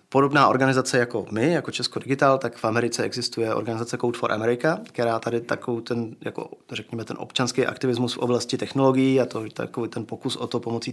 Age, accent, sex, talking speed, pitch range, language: 20-39, native, male, 180 wpm, 115-130 Hz, Czech